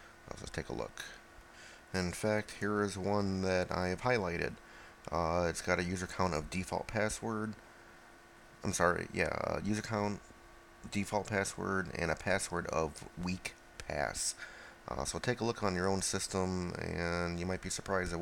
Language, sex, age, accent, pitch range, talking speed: English, male, 30-49, American, 85-100 Hz, 165 wpm